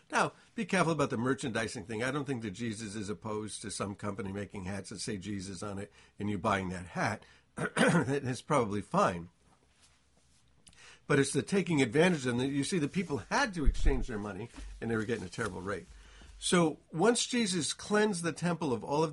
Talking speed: 200 wpm